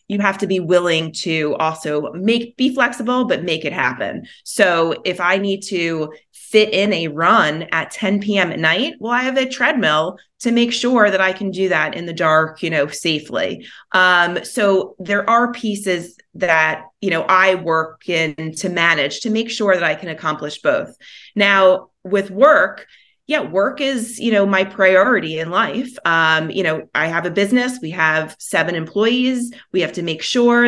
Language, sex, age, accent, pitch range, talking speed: English, female, 30-49, American, 160-215 Hz, 190 wpm